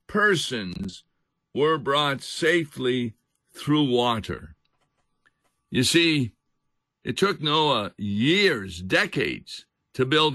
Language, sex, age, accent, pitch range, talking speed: English, male, 60-79, American, 120-155 Hz, 85 wpm